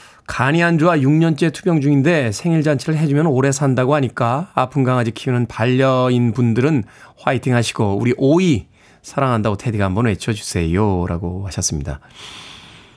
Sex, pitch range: male, 115-170 Hz